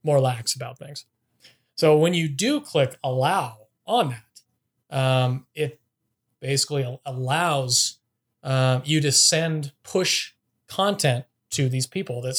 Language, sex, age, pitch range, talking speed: English, male, 30-49, 125-150 Hz, 125 wpm